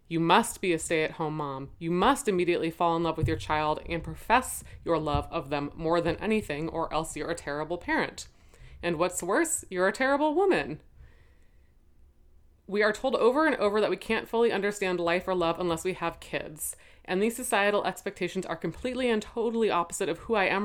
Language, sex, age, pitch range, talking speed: English, female, 20-39, 150-205 Hz, 200 wpm